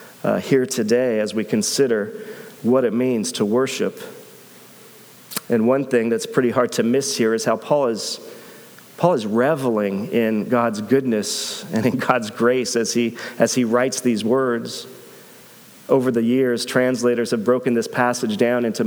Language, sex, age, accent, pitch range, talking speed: English, male, 40-59, American, 115-130 Hz, 160 wpm